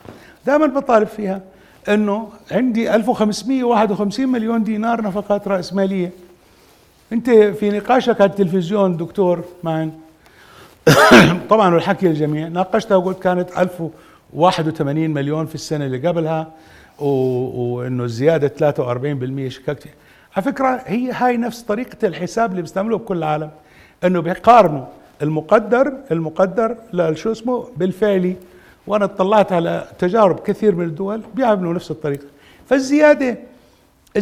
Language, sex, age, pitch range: Arabic, male, 60-79, 160-220 Hz